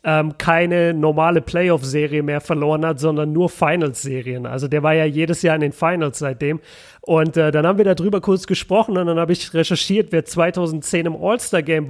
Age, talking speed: 30-49, 180 wpm